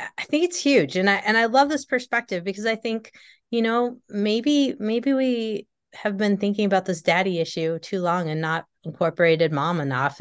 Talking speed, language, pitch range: 195 wpm, English, 175-240 Hz